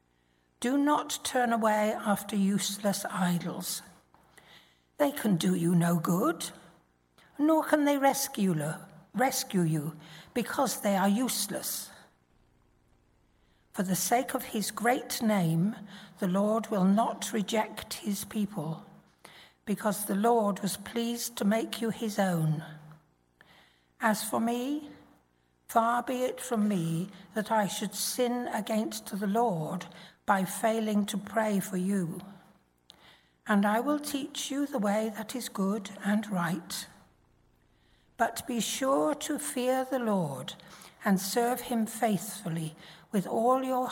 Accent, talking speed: British, 125 wpm